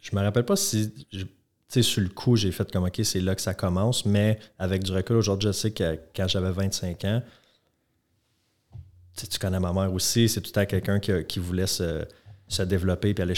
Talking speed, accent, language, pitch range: 225 wpm, Canadian, French, 90-105 Hz